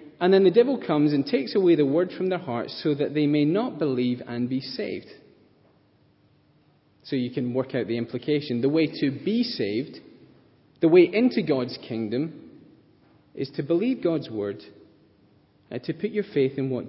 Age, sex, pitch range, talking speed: 30-49, male, 130-195 Hz, 180 wpm